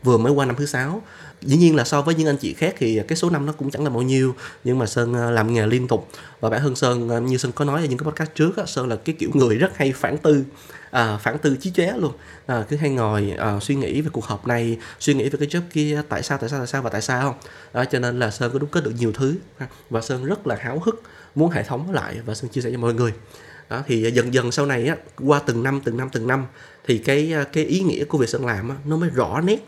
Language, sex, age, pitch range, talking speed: Vietnamese, male, 20-39, 120-150 Hz, 280 wpm